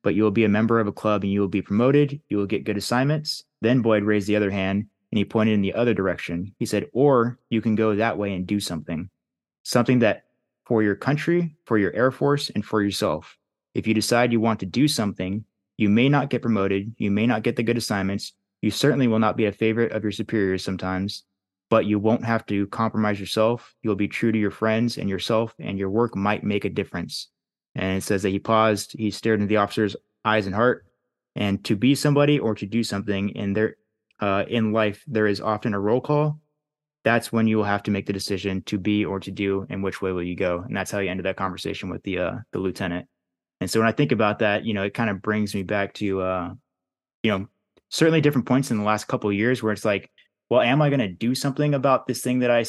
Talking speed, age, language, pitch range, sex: 245 wpm, 20-39, English, 100-120 Hz, male